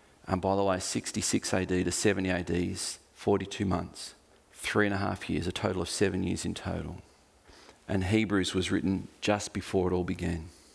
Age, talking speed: 40-59, 185 wpm